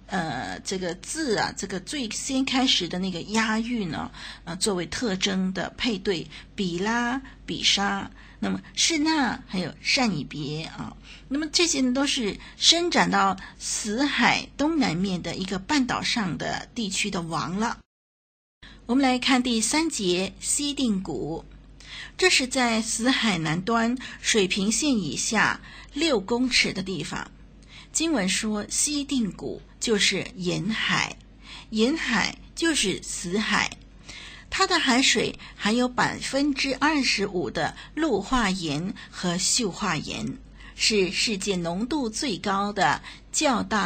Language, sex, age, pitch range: Chinese, female, 50-69, 190-265 Hz